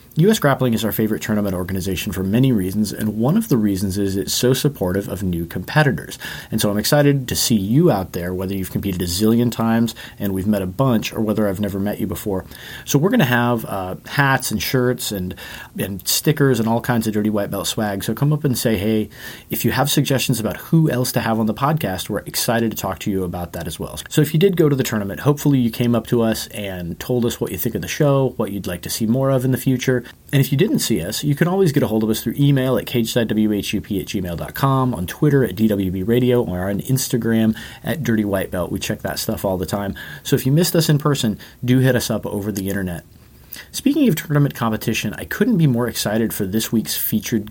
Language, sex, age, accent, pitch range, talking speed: English, male, 30-49, American, 100-130 Hz, 245 wpm